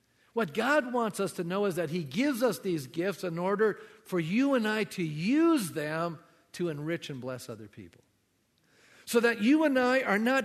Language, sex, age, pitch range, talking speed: English, male, 50-69, 165-245 Hz, 200 wpm